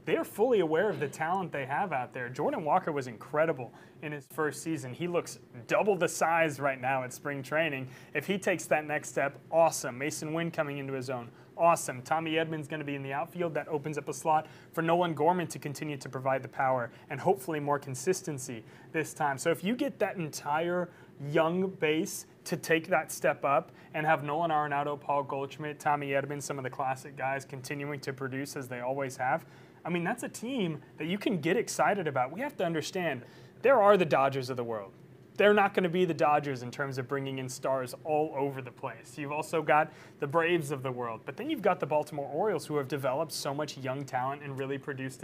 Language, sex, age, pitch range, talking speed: English, male, 30-49, 135-165 Hz, 220 wpm